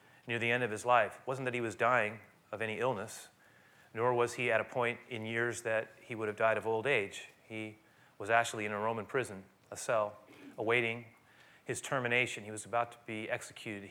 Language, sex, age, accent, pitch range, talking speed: English, male, 30-49, American, 105-130 Hz, 210 wpm